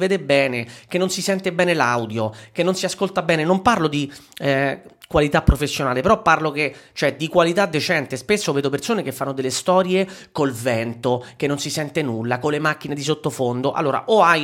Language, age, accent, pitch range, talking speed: Italian, 30-49, native, 140-185 Hz, 200 wpm